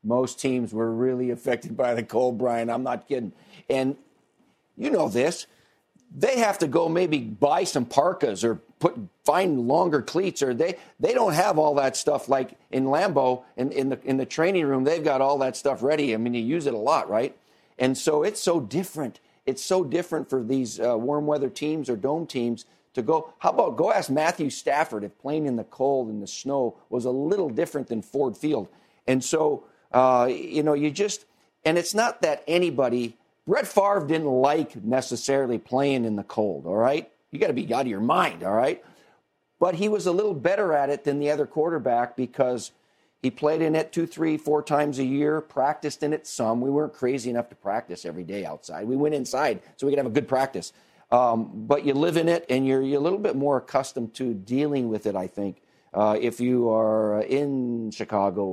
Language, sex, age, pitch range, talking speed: English, male, 50-69, 120-150 Hz, 210 wpm